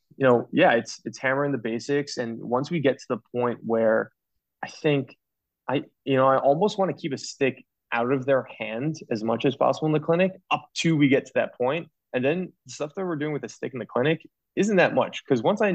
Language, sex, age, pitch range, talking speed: English, male, 20-39, 110-135 Hz, 250 wpm